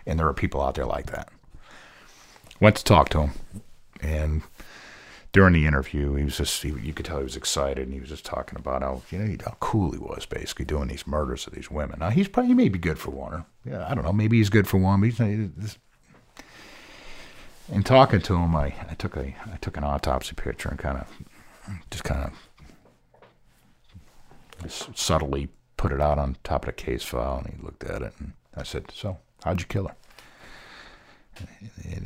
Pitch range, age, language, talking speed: 75-100 Hz, 50-69, English, 200 wpm